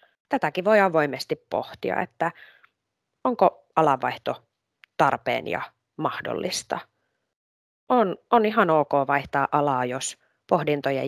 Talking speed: 95 wpm